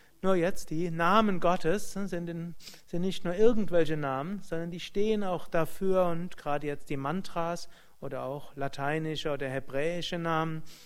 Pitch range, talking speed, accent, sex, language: 145-175 Hz, 155 wpm, German, male, German